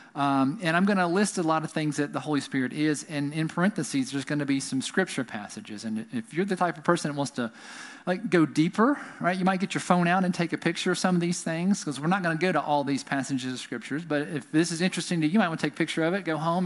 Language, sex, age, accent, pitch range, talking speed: English, male, 40-59, American, 145-200 Hz, 300 wpm